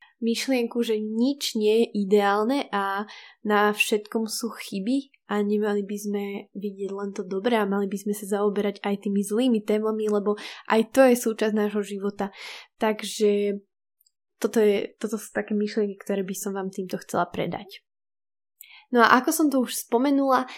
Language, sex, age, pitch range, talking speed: Slovak, female, 10-29, 205-230 Hz, 165 wpm